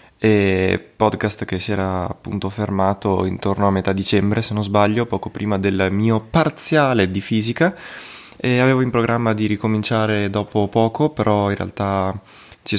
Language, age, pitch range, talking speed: Italian, 20-39, 100-115 Hz, 155 wpm